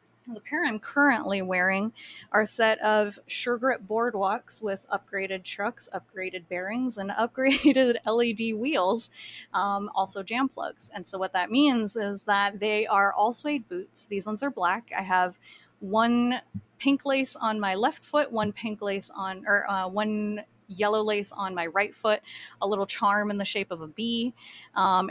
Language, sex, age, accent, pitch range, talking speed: English, female, 20-39, American, 190-230 Hz, 175 wpm